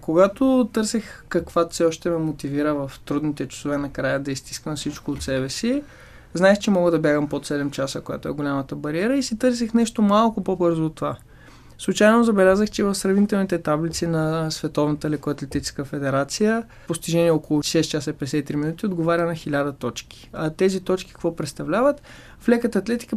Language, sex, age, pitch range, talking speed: Bulgarian, male, 20-39, 150-215 Hz, 170 wpm